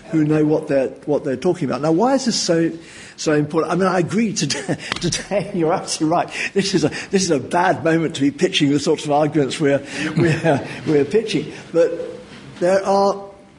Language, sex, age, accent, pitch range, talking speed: English, male, 50-69, British, 135-180 Hz, 210 wpm